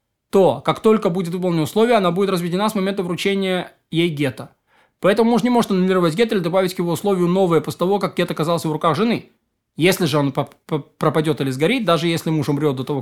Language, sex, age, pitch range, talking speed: Russian, male, 20-39, 160-210 Hz, 210 wpm